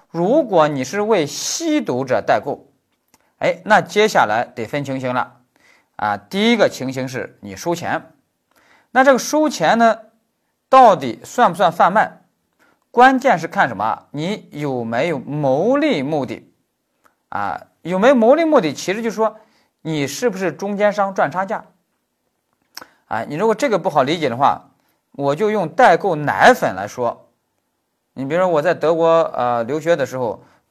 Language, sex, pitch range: Chinese, male, 150-230 Hz